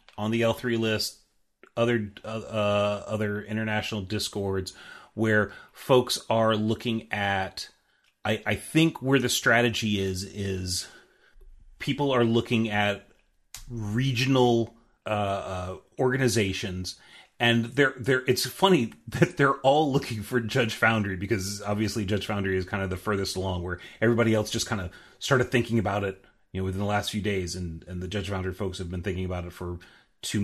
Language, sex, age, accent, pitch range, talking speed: English, male, 30-49, American, 95-115 Hz, 160 wpm